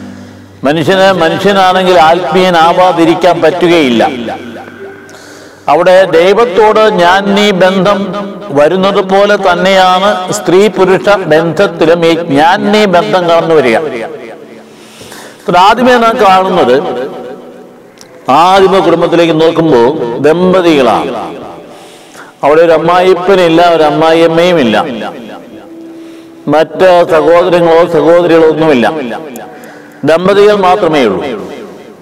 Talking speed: 75 wpm